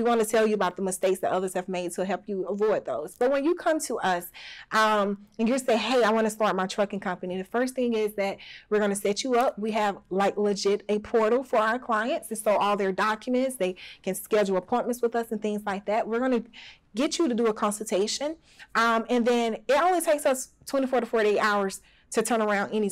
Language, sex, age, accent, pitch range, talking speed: English, female, 30-49, American, 200-235 Hz, 250 wpm